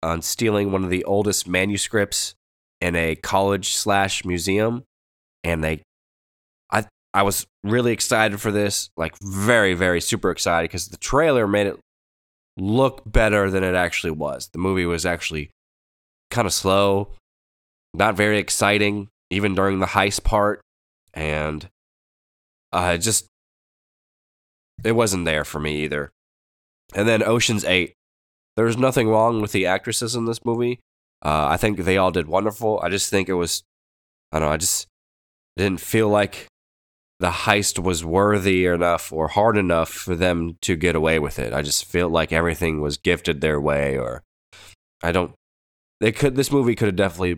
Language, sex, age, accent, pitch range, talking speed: English, male, 10-29, American, 75-100 Hz, 165 wpm